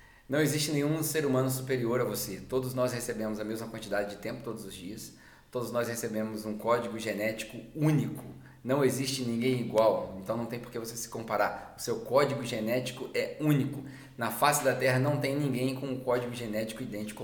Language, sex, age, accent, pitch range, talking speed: English, male, 20-39, Brazilian, 110-130 Hz, 195 wpm